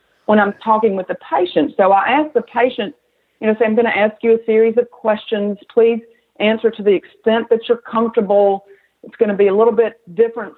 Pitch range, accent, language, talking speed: 195-240 Hz, American, English, 220 wpm